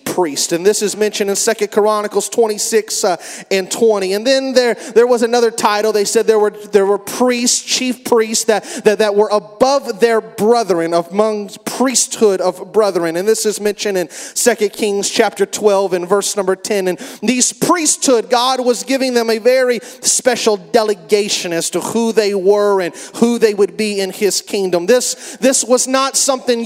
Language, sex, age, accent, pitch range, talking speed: English, male, 30-49, American, 205-245 Hz, 185 wpm